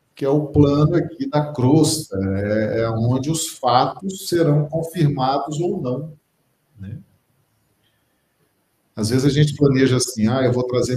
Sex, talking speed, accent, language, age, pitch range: male, 140 wpm, Brazilian, Portuguese, 40-59, 110-140 Hz